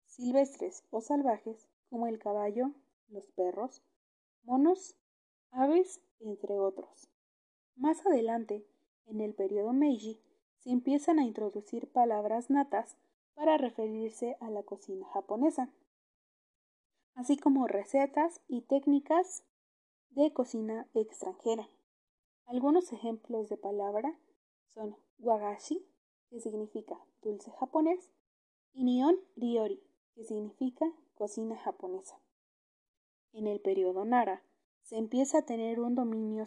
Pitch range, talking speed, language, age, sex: 215-290 Hz, 105 wpm, Spanish, 20-39, female